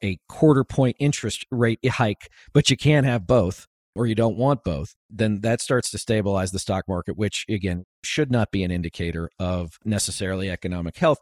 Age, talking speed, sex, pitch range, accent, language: 40-59, 185 wpm, male, 95-135 Hz, American, English